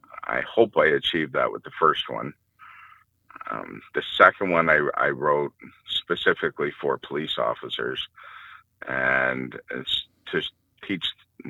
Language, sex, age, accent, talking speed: English, male, 50-69, American, 125 wpm